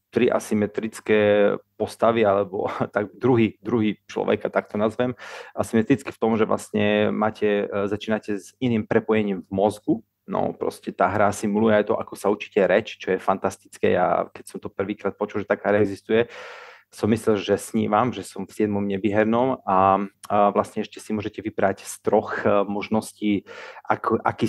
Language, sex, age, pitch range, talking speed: Slovak, male, 30-49, 100-115 Hz, 165 wpm